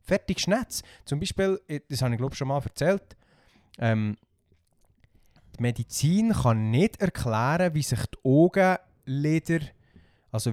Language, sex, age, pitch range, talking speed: German, male, 20-39, 105-145 Hz, 125 wpm